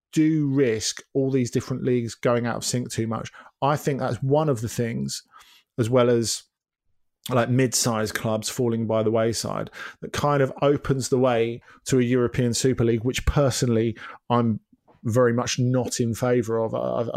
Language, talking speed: English, 175 wpm